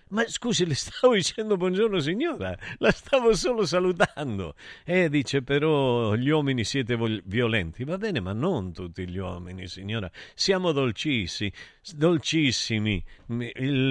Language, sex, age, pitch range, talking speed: Italian, male, 50-69, 110-155 Hz, 140 wpm